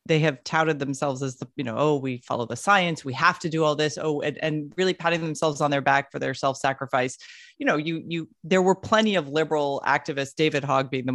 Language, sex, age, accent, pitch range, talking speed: English, female, 30-49, American, 145-185 Hz, 250 wpm